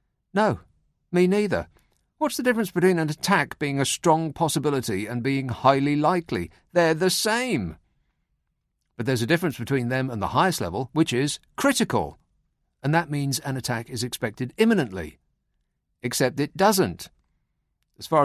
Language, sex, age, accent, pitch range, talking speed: English, male, 50-69, British, 120-160 Hz, 150 wpm